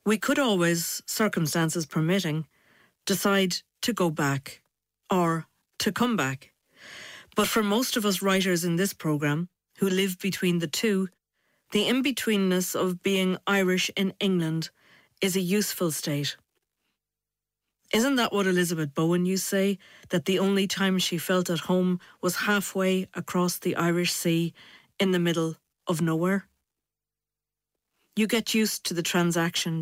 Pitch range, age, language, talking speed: 170-200 Hz, 40-59, English, 145 wpm